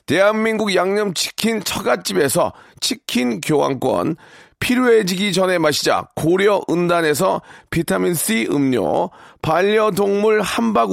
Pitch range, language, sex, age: 165-210 Hz, Korean, male, 40-59